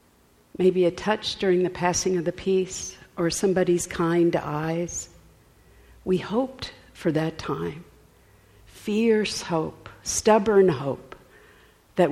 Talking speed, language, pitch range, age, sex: 115 wpm, English, 150-185 Hz, 50-69, female